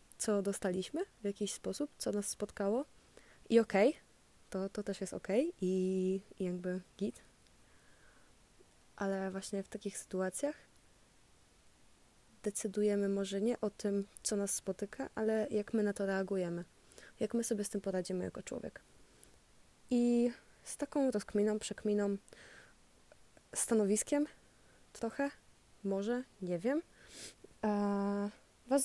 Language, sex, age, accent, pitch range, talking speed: Polish, female, 20-39, native, 195-220 Hz, 120 wpm